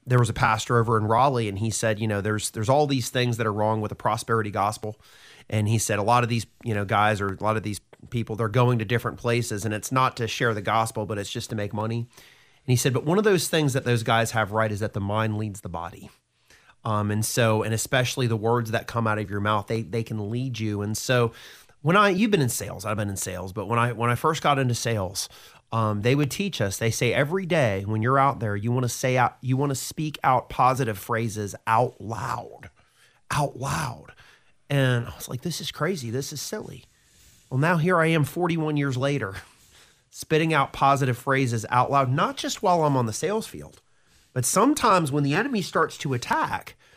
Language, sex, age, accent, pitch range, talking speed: English, male, 30-49, American, 110-140 Hz, 240 wpm